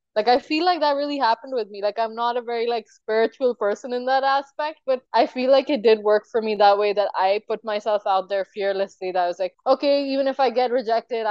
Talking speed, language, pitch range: 255 wpm, English, 200-245 Hz